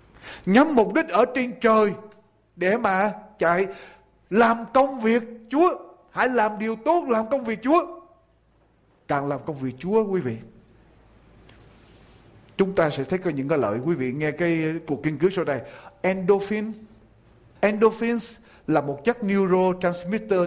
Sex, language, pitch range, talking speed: male, Vietnamese, 175-245 Hz, 150 wpm